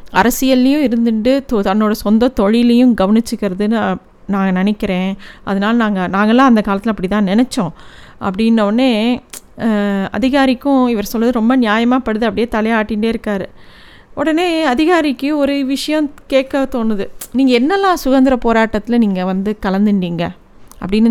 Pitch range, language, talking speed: 200-250 Hz, Tamil, 110 wpm